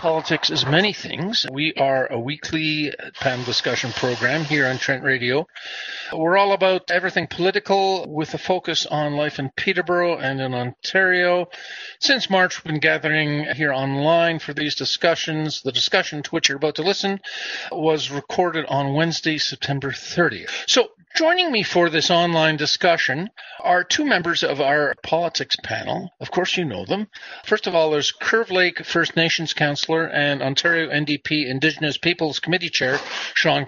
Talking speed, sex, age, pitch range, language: 160 wpm, male, 50-69, 135-180 Hz, English